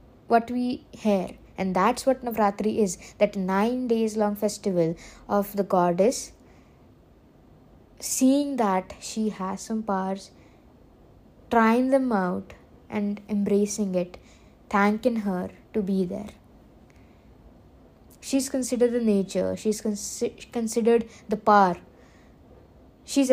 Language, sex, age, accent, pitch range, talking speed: English, female, 20-39, Indian, 205-265 Hz, 110 wpm